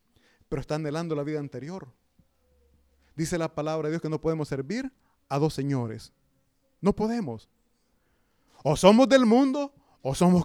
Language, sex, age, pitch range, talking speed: Italian, male, 30-49, 145-205 Hz, 150 wpm